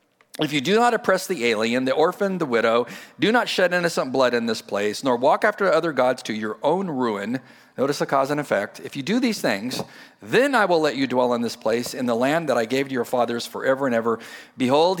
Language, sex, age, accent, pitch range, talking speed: English, male, 40-59, American, 110-145 Hz, 240 wpm